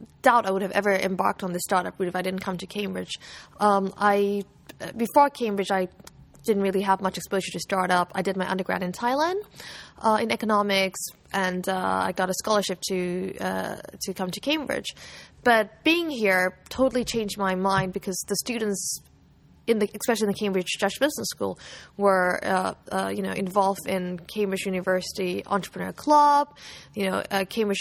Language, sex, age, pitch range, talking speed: English, female, 20-39, 185-220 Hz, 180 wpm